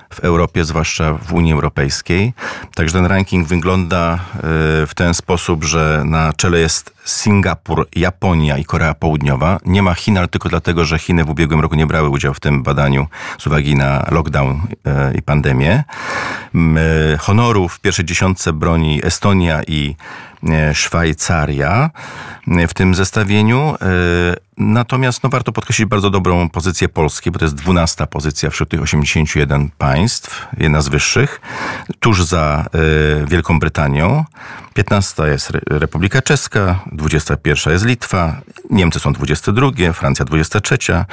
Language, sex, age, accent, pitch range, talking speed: Polish, male, 40-59, native, 75-95 Hz, 135 wpm